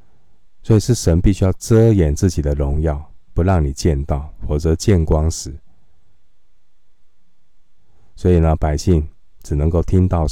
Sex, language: male, Chinese